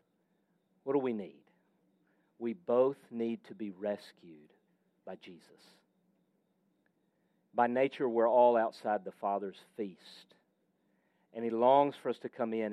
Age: 50-69